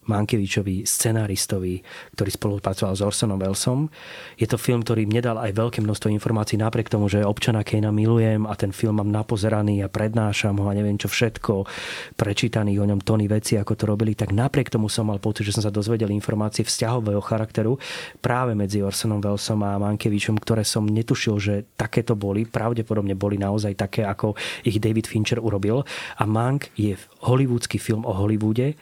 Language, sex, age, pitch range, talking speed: Slovak, male, 30-49, 100-115 Hz, 175 wpm